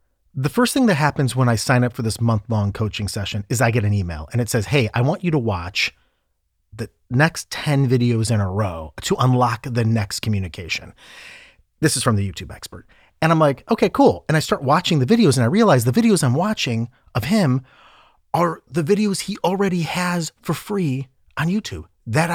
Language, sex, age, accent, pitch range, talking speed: English, male, 30-49, American, 110-160 Hz, 210 wpm